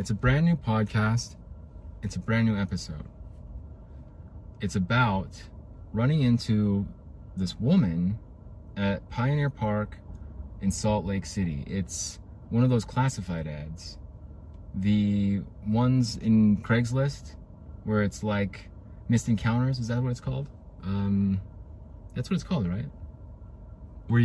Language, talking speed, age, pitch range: English, 125 wpm, 30-49, 90-115 Hz